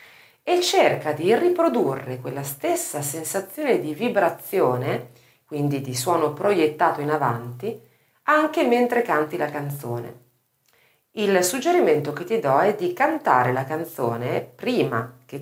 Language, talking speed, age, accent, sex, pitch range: Italian, 125 wpm, 40-59, native, female, 140-225 Hz